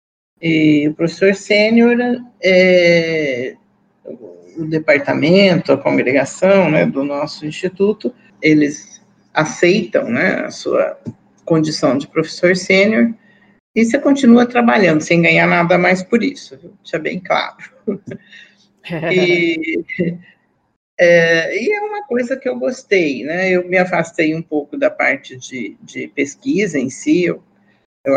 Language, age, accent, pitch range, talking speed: Portuguese, 50-69, Brazilian, 155-205 Hz, 130 wpm